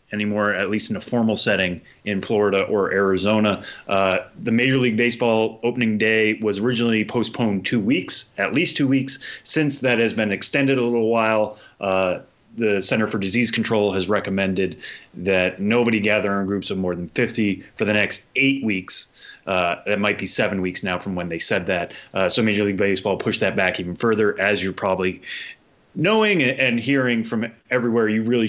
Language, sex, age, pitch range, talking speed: English, male, 30-49, 100-115 Hz, 185 wpm